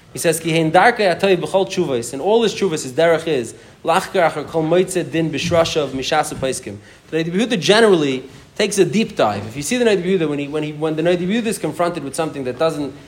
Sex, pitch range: male, 140-185 Hz